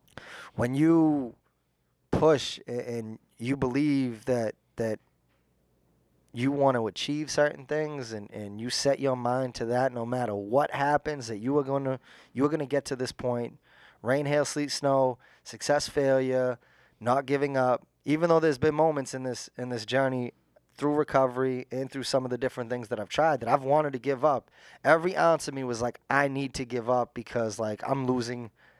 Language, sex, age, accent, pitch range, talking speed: English, male, 20-39, American, 120-140 Hz, 190 wpm